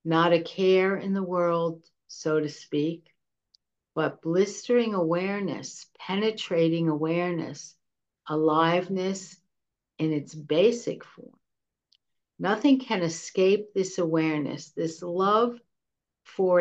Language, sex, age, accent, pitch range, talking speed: English, female, 60-79, American, 155-185 Hz, 100 wpm